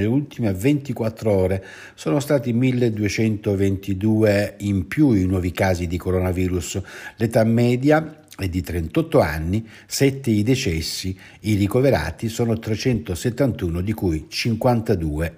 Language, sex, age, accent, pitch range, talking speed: Italian, male, 60-79, native, 95-125 Hz, 115 wpm